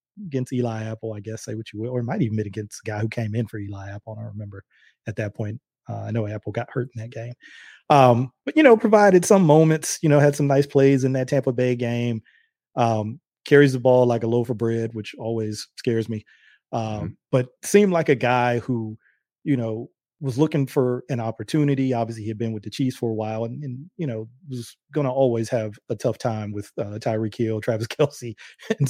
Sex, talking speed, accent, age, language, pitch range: male, 235 wpm, American, 30-49, English, 110-135 Hz